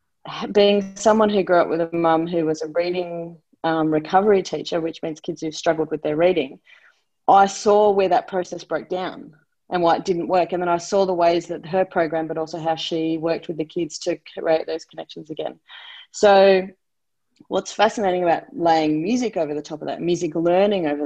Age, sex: 30-49, female